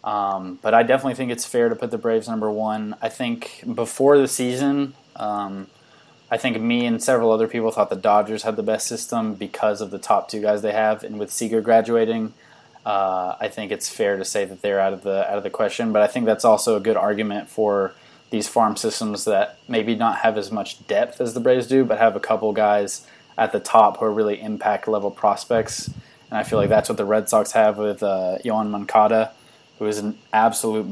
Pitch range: 105-120 Hz